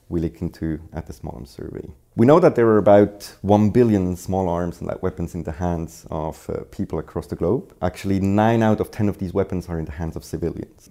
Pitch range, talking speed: 80-95 Hz, 240 wpm